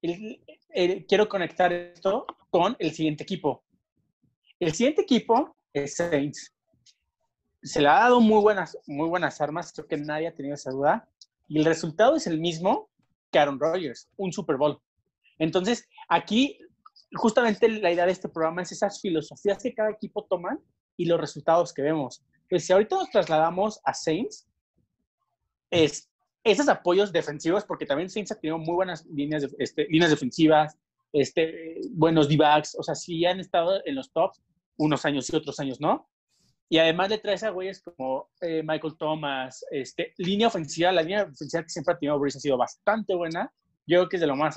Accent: Mexican